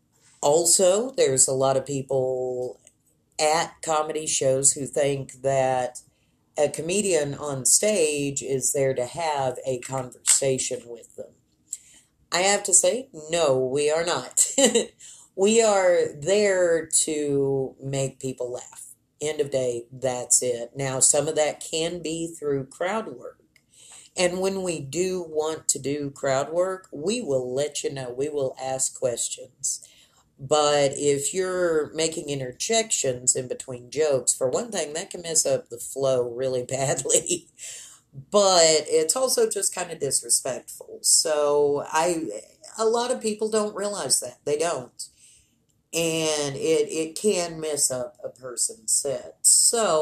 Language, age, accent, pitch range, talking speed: English, 40-59, American, 135-185 Hz, 140 wpm